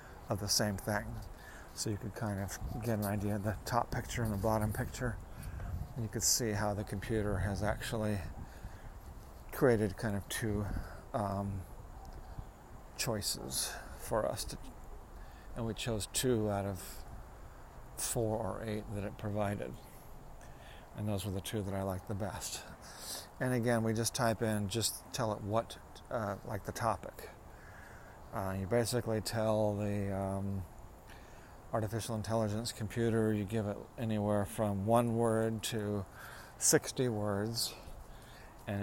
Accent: American